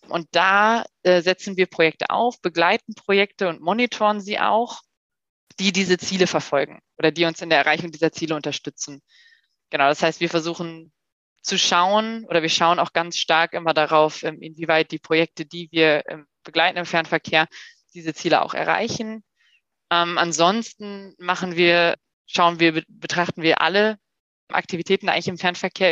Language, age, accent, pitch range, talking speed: German, 20-39, German, 160-185 Hz, 155 wpm